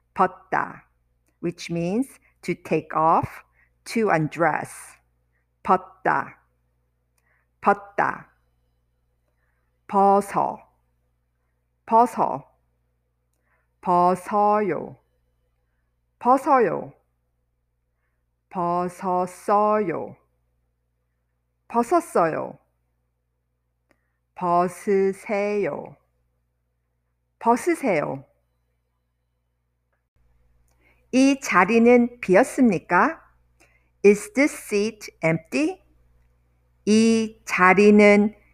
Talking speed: 45 wpm